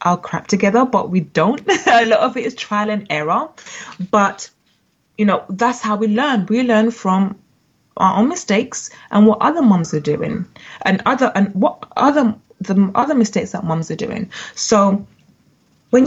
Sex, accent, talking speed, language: female, British, 175 wpm, English